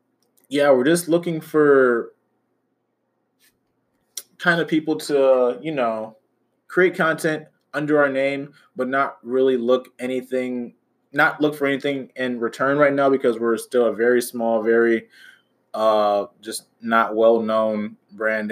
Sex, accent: male, American